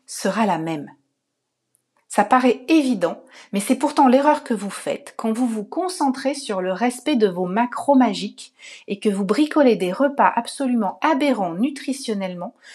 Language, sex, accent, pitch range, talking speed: French, female, French, 200-280 Hz, 155 wpm